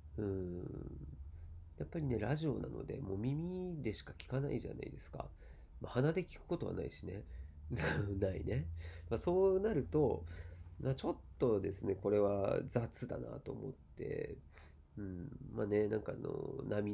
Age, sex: 40-59, male